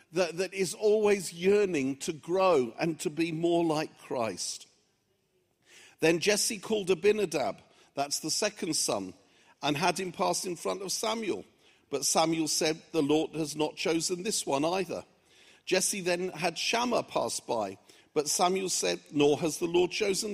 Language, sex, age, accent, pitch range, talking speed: English, male, 50-69, British, 170-235 Hz, 155 wpm